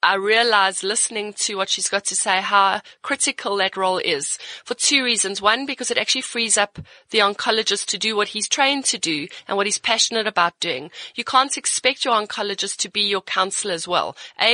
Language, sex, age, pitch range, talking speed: English, female, 30-49, 200-250 Hz, 205 wpm